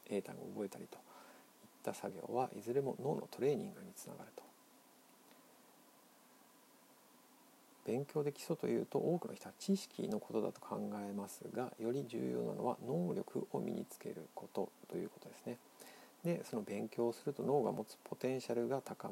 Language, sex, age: Japanese, male, 50-69